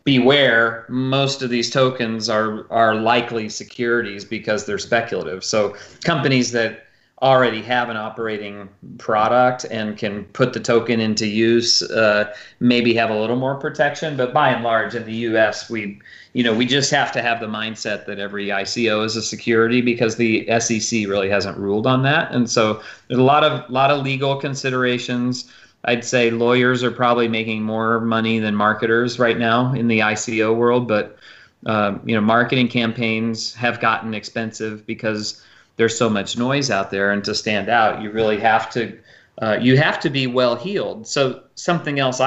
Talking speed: 175 wpm